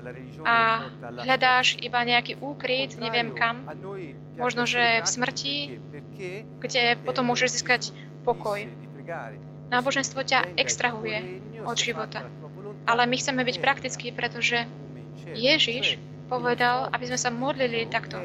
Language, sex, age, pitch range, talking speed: Slovak, female, 20-39, 230-255 Hz, 115 wpm